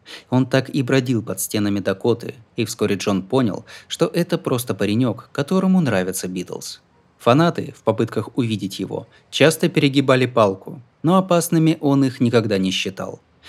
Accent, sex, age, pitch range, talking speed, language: native, male, 20-39, 105-155 Hz, 145 wpm, Russian